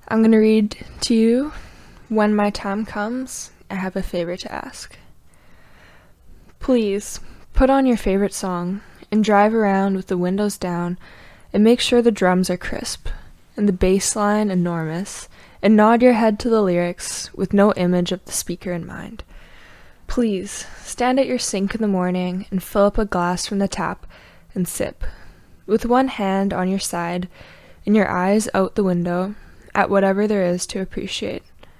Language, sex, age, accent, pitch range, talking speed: English, female, 10-29, American, 180-220 Hz, 175 wpm